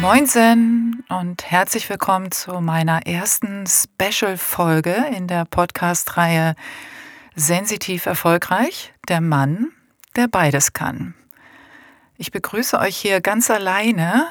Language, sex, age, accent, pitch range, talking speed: German, female, 40-59, German, 165-200 Hz, 100 wpm